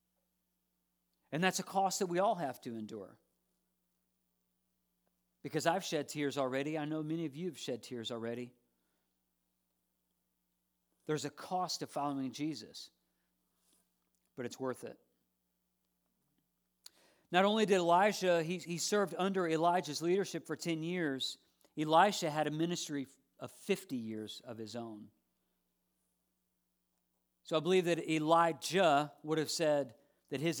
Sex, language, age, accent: male, English, 50-69, American